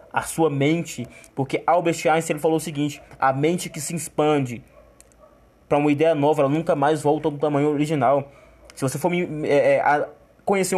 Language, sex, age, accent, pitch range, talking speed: Portuguese, male, 20-39, Brazilian, 140-165 Hz, 185 wpm